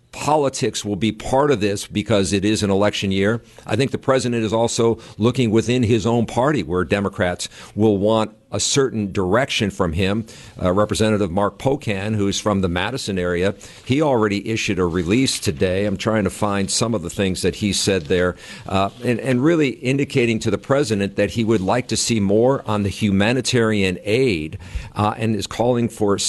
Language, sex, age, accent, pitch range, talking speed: English, male, 50-69, American, 100-120 Hz, 190 wpm